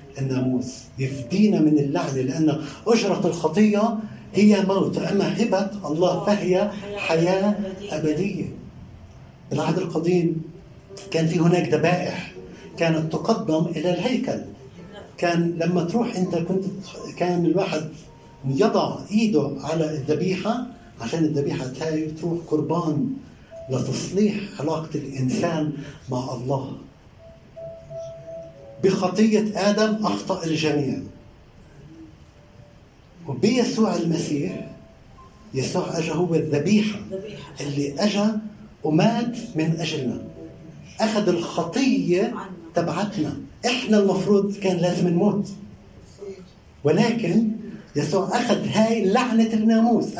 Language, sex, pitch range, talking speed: Arabic, male, 155-205 Hz, 90 wpm